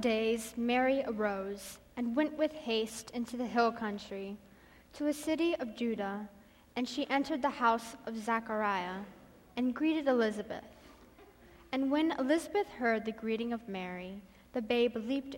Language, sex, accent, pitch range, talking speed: English, female, American, 205-250 Hz, 145 wpm